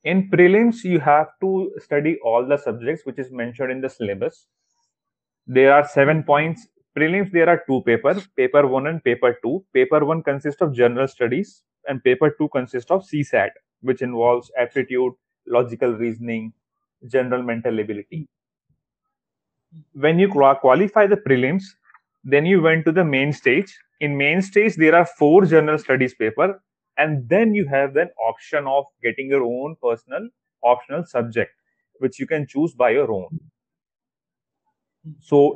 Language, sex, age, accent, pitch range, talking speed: English, male, 30-49, Indian, 130-180 Hz, 155 wpm